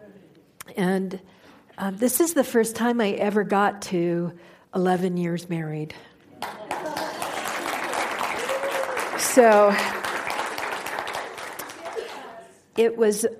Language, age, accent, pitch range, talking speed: English, 50-69, American, 175-235 Hz, 75 wpm